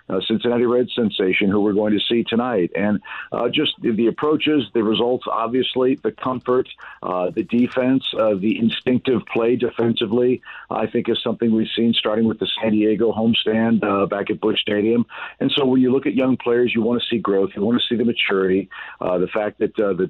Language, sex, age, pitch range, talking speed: English, male, 50-69, 105-120 Hz, 210 wpm